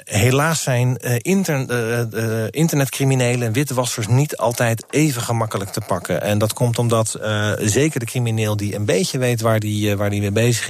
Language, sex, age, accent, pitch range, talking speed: Dutch, male, 40-59, Dutch, 105-130 Hz, 180 wpm